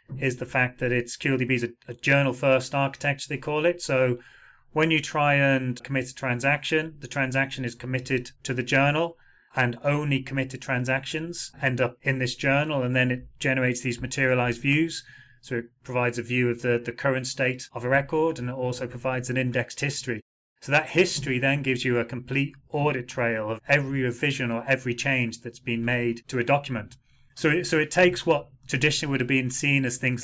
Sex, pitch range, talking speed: male, 125-135 Hz, 200 wpm